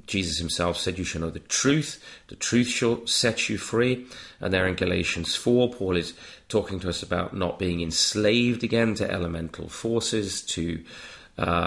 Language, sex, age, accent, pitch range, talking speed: English, male, 30-49, British, 90-115 Hz, 175 wpm